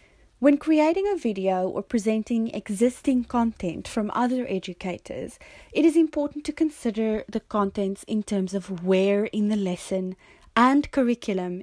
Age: 30-49